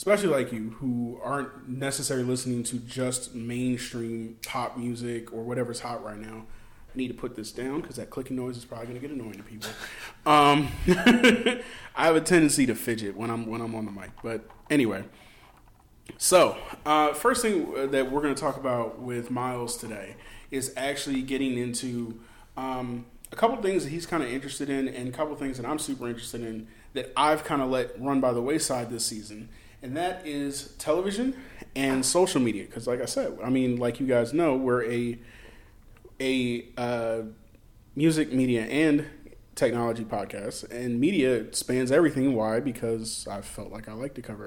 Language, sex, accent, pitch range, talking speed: English, male, American, 115-135 Hz, 185 wpm